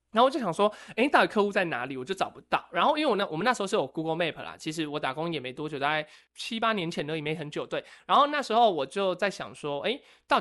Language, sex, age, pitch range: Chinese, male, 20-39, 150-190 Hz